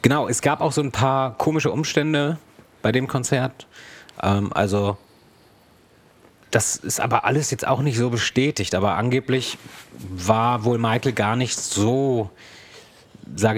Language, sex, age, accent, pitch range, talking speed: German, male, 30-49, German, 105-130 Hz, 140 wpm